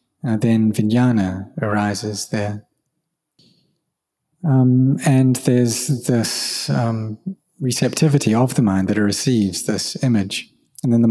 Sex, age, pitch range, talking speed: male, 30-49, 105-130 Hz, 120 wpm